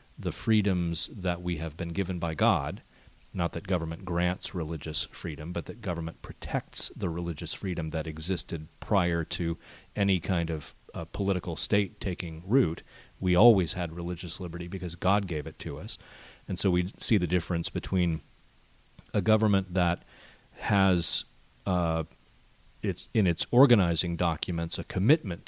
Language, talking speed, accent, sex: English, 150 wpm, American, male